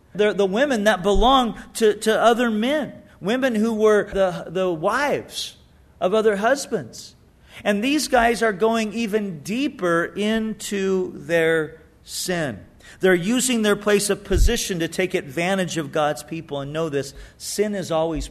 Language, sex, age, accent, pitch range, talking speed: English, male, 40-59, American, 165-215 Hz, 150 wpm